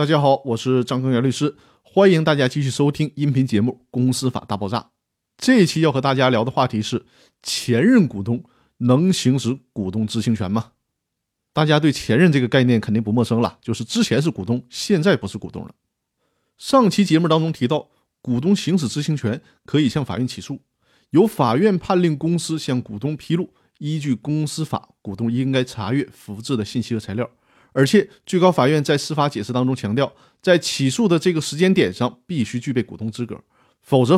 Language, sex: Chinese, male